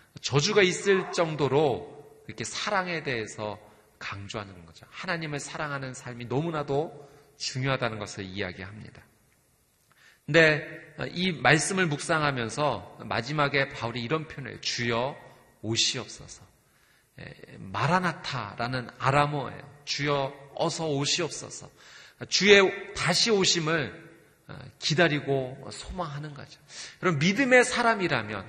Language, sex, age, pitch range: Korean, male, 30-49, 130-175 Hz